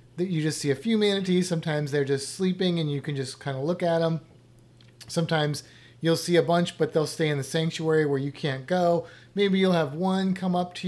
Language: English